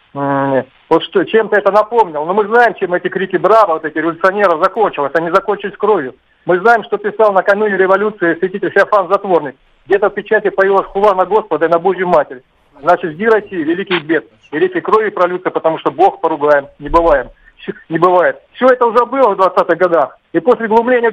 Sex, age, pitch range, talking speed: male, 40-59, 185-230 Hz, 185 wpm